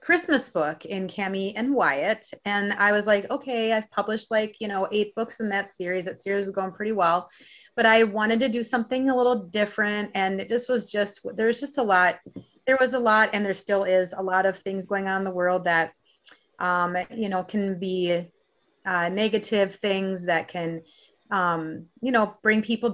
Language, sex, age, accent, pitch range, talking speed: English, female, 30-49, American, 180-215 Hz, 200 wpm